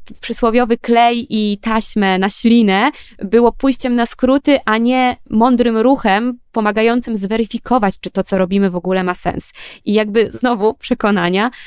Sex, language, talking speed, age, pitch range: female, Polish, 145 wpm, 20-39, 200-250 Hz